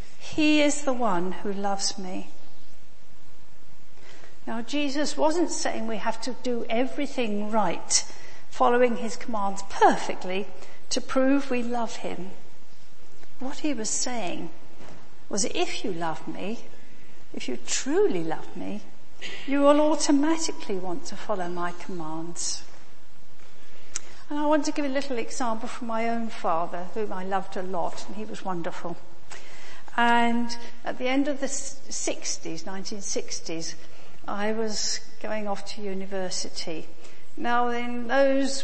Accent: British